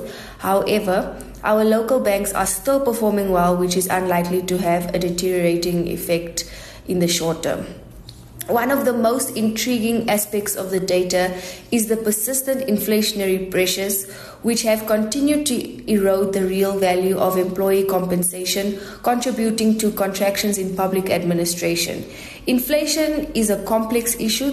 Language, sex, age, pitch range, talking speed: English, female, 20-39, 185-220 Hz, 135 wpm